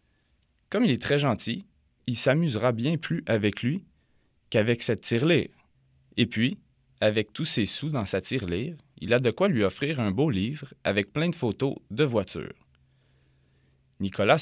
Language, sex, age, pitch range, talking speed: French, male, 30-49, 100-140 Hz, 160 wpm